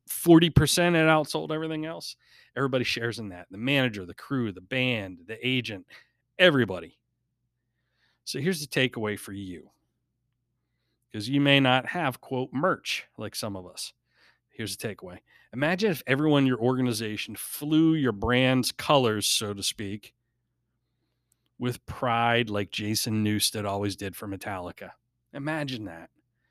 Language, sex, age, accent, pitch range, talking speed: English, male, 30-49, American, 110-135 Hz, 140 wpm